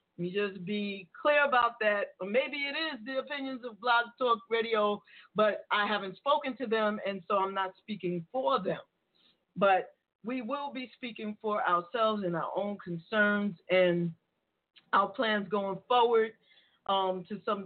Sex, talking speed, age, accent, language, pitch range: female, 165 wpm, 40-59, American, English, 190-235 Hz